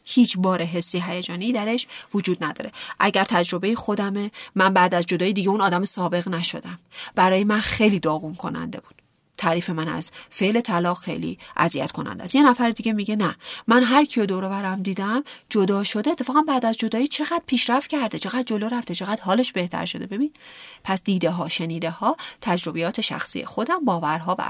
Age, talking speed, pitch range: 30-49, 180 wpm, 175-250 Hz